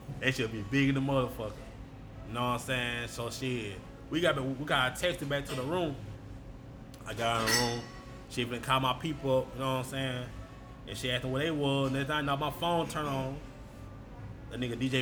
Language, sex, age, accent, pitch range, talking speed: English, male, 20-39, American, 125-150 Hz, 230 wpm